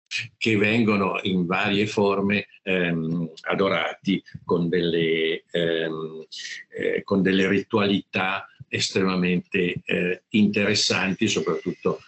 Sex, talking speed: male, 90 wpm